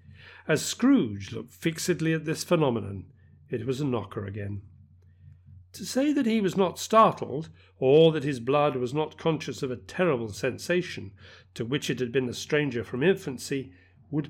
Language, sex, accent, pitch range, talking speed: English, male, British, 100-155 Hz, 170 wpm